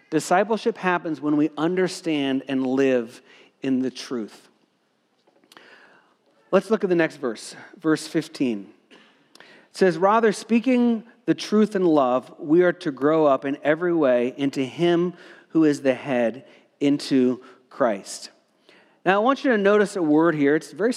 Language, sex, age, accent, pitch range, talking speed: English, male, 40-59, American, 150-205 Hz, 155 wpm